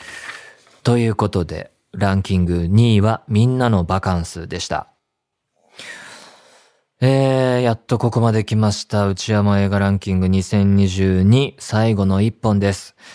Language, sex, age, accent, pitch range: Japanese, male, 20-39, native, 95-120 Hz